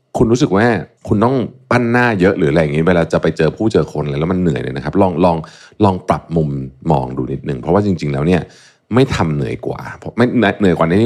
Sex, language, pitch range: male, Thai, 75-115 Hz